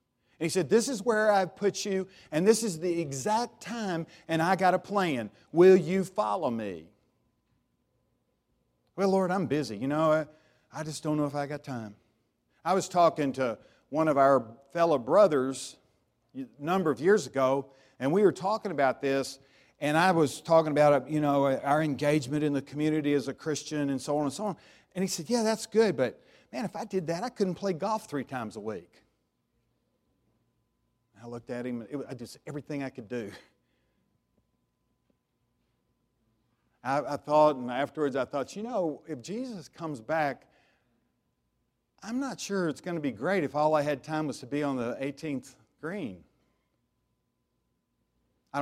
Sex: male